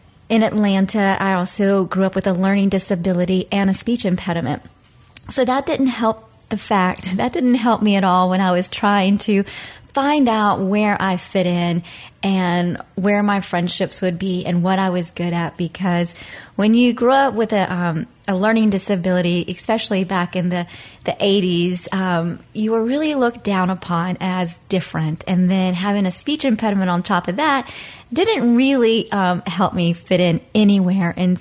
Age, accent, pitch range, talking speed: 30-49, American, 185-220 Hz, 180 wpm